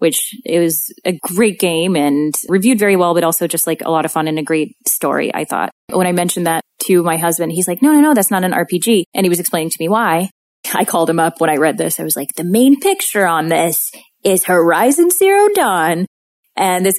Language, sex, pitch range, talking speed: English, female, 165-220 Hz, 245 wpm